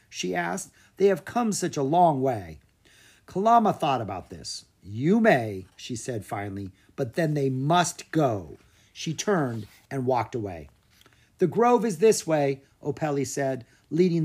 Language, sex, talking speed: English, male, 150 wpm